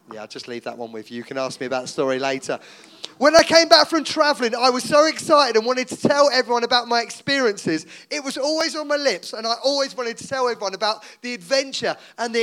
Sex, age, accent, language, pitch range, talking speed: male, 30-49, British, English, 200-265 Hz, 250 wpm